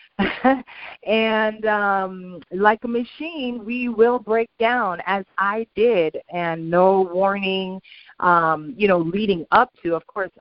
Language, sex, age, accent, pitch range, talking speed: English, female, 30-49, American, 165-205 Hz, 135 wpm